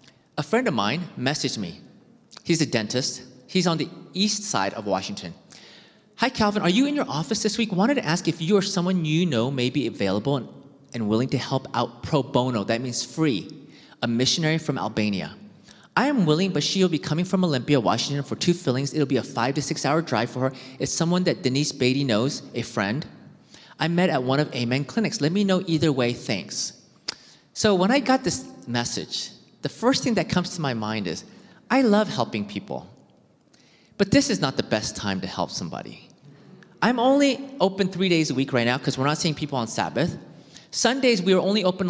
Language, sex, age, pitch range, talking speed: English, male, 30-49, 130-190 Hz, 210 wpm